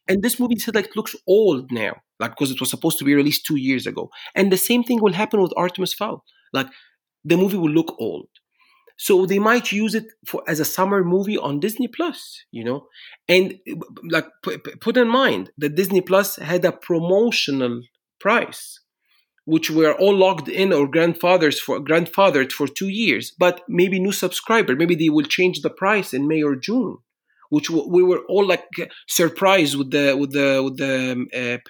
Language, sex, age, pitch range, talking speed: English, male, 40-59, 155-210 Hz, 190 wpm